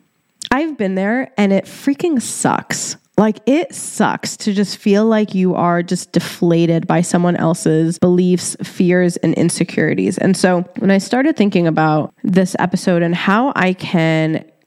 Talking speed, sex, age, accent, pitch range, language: 155 wpm, female, 20-39, American, 170-215 Hz, English